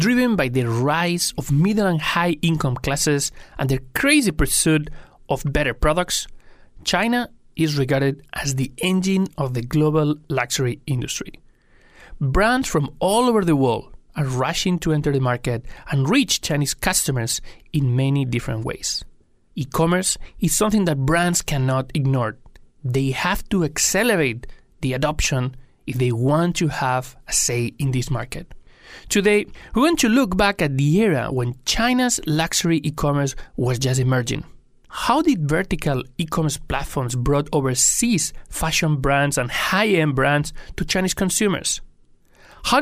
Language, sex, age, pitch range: Chinese, male, 30-49, 130-185 Hz